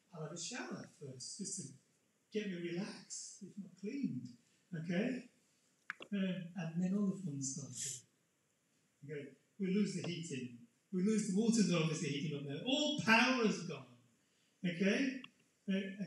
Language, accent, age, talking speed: English, British, 30-49, 155 wpm